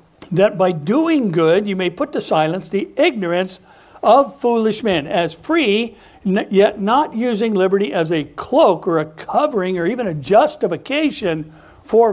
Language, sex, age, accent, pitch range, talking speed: English, male, 60-79, American, 160-220 Hz, 155 wpm